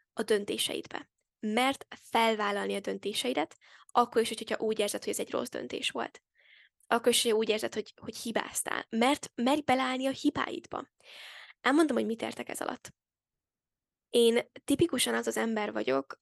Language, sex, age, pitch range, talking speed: Hungarian, female, 10-29, 215-265 Hz, 150 wpm